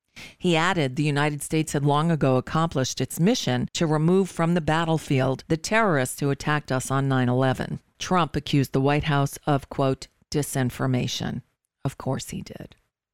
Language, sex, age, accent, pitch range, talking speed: English, female, 40-59, American, 140-170 Hz, 160 wpm